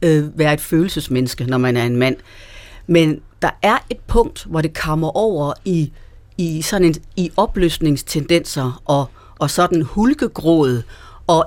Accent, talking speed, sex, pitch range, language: native, 135 wpm, female, 145-190 Hz, Danish